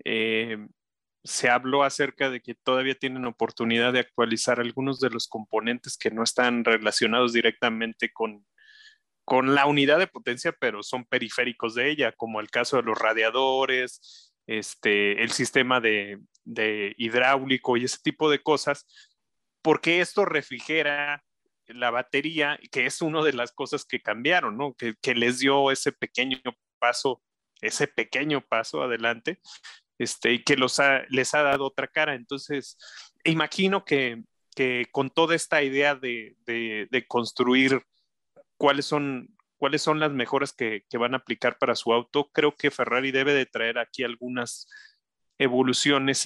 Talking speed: 155 wpm